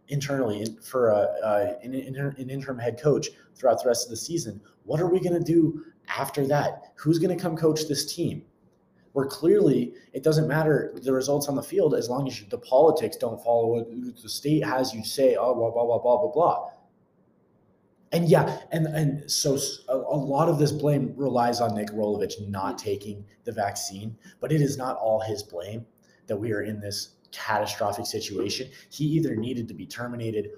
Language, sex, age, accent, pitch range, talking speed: English, male, 20-39, American, 110-150 Hz, 190 wpm